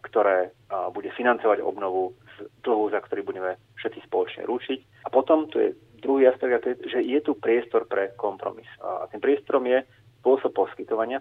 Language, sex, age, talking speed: Slovak, male, 30-49, 165 wpm